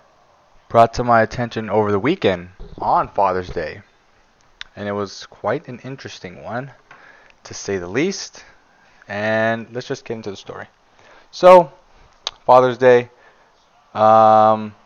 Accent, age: American, 20-39